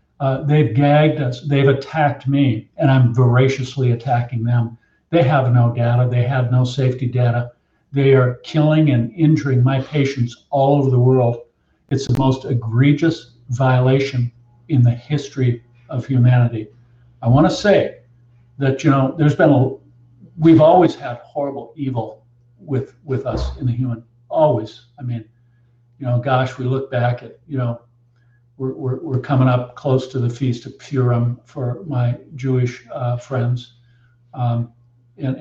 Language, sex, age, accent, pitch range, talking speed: English, male, 50-69, American, 120-135 Hz, 160 wpm